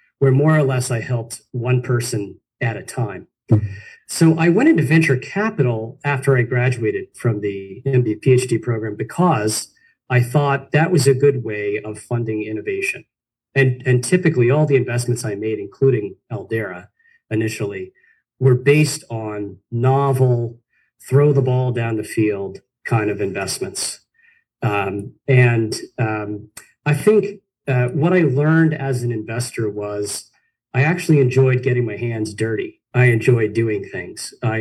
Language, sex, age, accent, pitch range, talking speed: English, male, 40-59, American, 110-140 Hz, 145 wpm